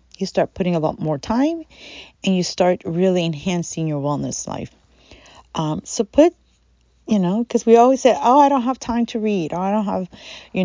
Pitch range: 145-190 Hz